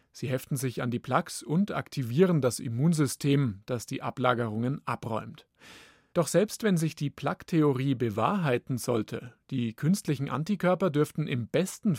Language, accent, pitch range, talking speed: German, German, 125-165 Hz, 140 wpm